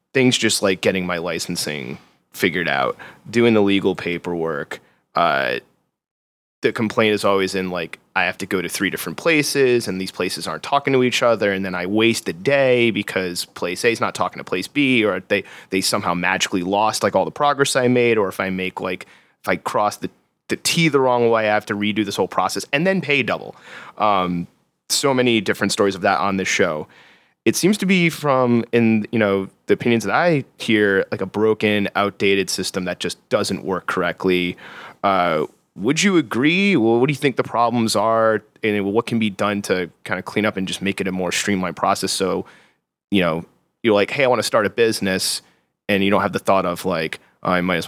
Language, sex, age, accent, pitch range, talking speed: English, male, 30-49, American, 95-120 Hz, 215 wpm